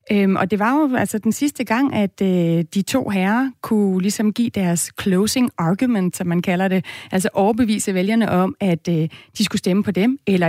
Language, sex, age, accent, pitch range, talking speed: Danish, female, 30-49, native, 185-225 Hz, 205 wpm